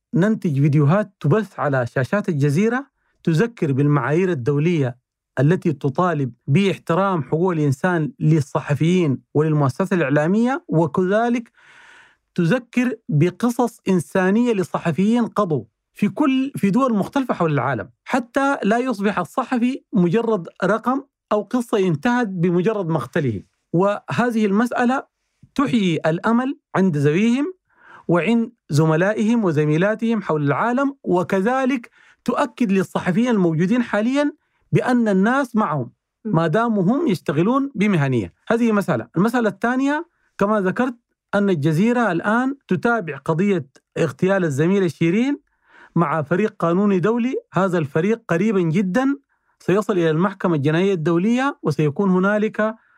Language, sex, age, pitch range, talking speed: Arabic, male, 40-59, 165-235 Hz, 105 wpm